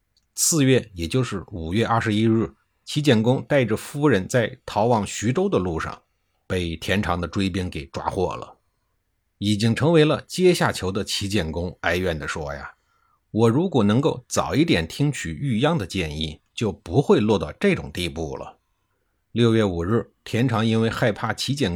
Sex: male